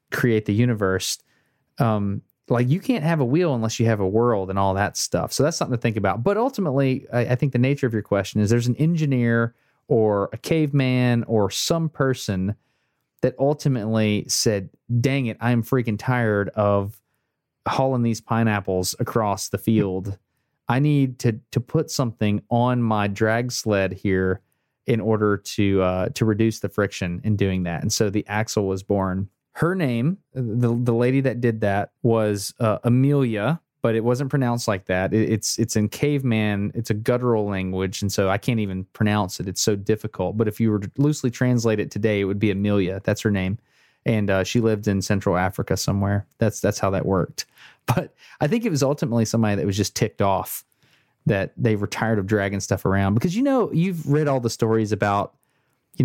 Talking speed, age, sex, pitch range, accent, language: 195 wpm, 30-49, male, 100-125 Hz, American, English